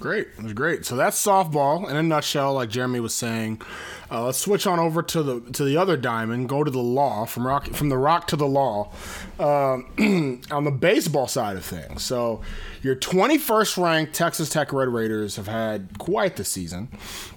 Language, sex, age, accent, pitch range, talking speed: English, male, 20-39, American, 125-175 Hz, 195 wpm